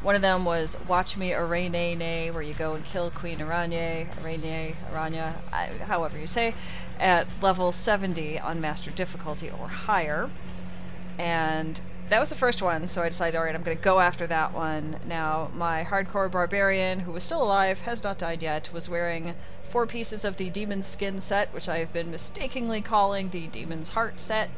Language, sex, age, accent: English, female, 30-49, American